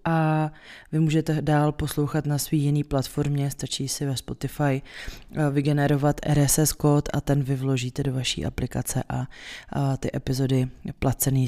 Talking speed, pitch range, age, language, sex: 145 wpm, 135-155 Hz, 20-39, Czech, female